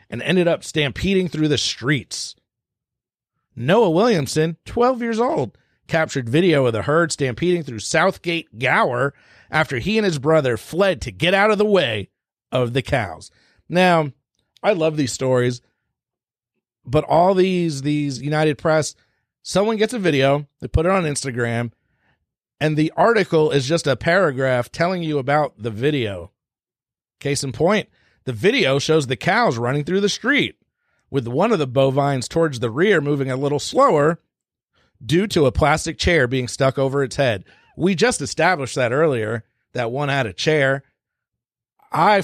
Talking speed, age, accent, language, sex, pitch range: 160 wpm, 40-59, American, English, male, 130-175 Hz